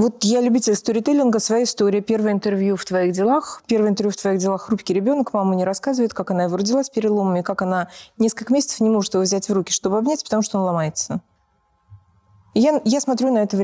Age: 30-49